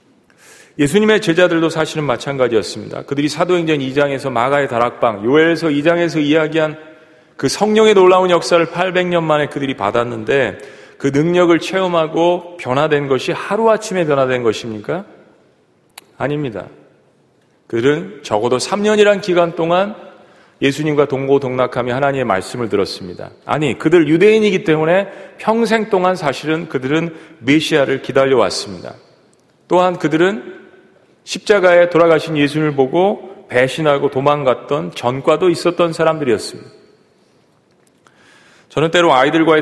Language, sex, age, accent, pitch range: Korean, male, 40-59, native, 130-175 Hz